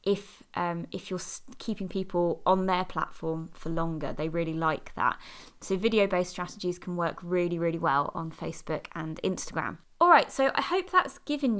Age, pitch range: 20-39, 180-230 Hz